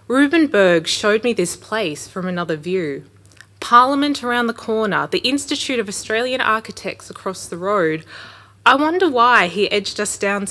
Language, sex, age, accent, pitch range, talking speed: English, female, 20-39, Australian, 175-245 Hz, 155 wpm